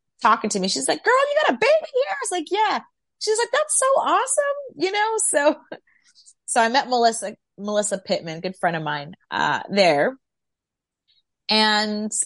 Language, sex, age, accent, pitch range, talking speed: English, female, 30-49, American, 190-275 Hz, 175 wpm